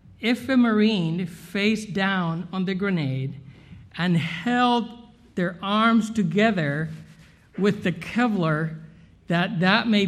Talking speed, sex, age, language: 115 wpm, male, 60-79, English